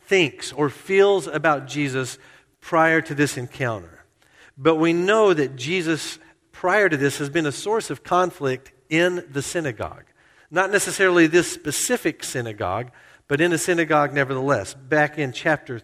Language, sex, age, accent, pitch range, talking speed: English, male, 50-69, American, 125-150 Hz, 150 wpm